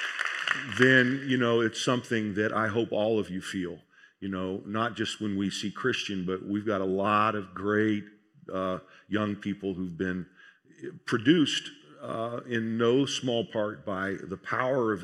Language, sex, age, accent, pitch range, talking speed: English, male, 50-69, American, 95-110 Hz, 170 wpm